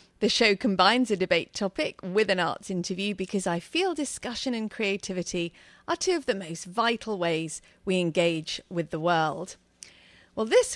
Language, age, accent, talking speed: English, 40-59, British, 165 wpm